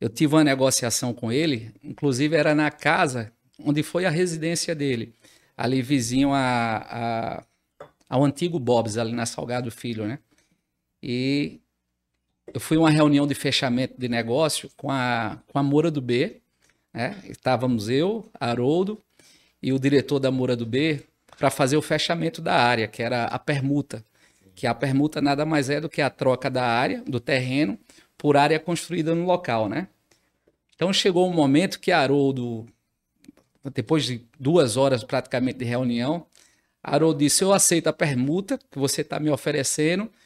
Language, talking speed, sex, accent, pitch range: Portuguese, 160 wpm, male, Brazilian, 125-160 Hz